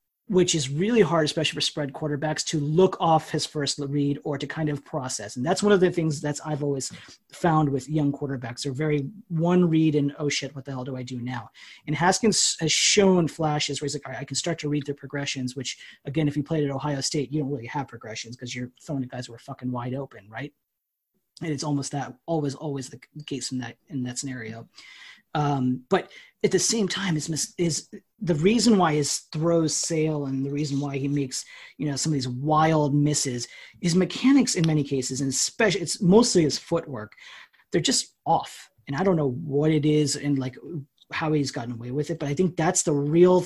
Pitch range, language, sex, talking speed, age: 135-160 Hz, English, male, 225 wpm, 30-49